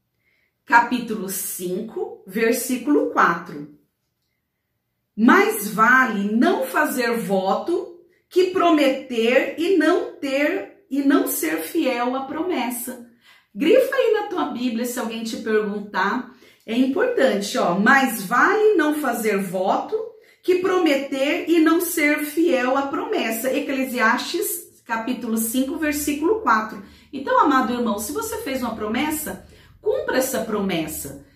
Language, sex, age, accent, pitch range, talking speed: Portuguese, female, 40-59, Brazilian, 235-310 Hz, 115 wpm